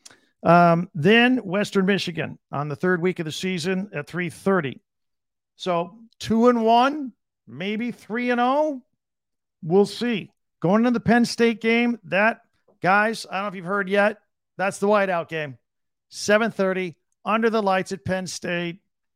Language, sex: English, male